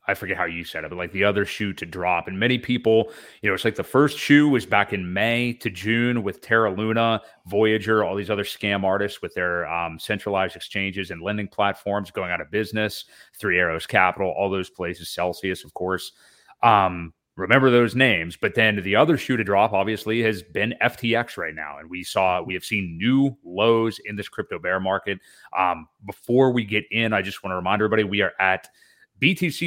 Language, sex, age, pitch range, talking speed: English, male, 30-49, 95-125 Hz, 210 wpm